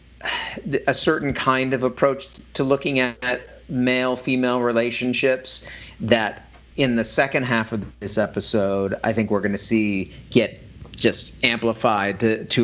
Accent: American